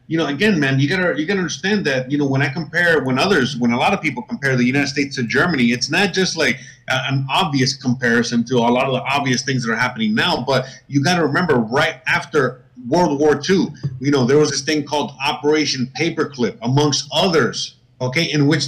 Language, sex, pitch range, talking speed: English, male, 130-155 Hz, 220 wpm